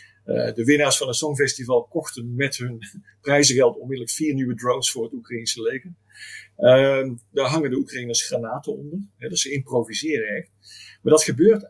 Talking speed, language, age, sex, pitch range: 170 wpm, Dutch, 50-69, male, 125-170 Hz